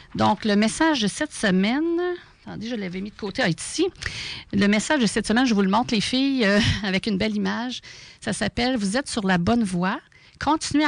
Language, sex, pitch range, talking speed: French, female, 190-245 Hz, 215 wpm